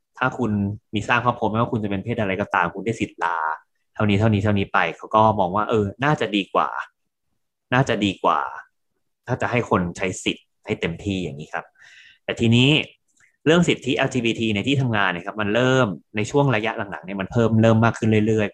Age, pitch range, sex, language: 20-39, 100-120 Hz, male, Thai